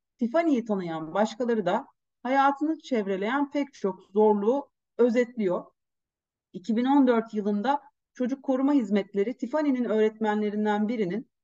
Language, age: Turkish, 40-59